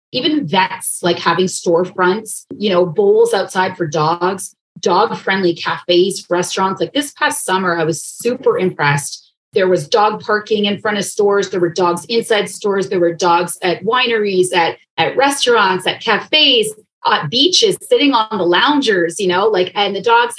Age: 30-49